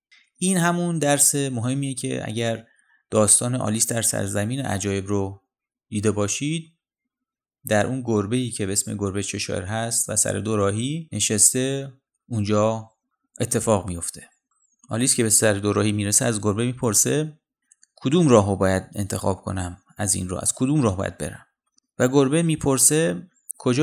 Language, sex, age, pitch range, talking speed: Persian, male, 30-49, 105-140 Hz, 145 wpm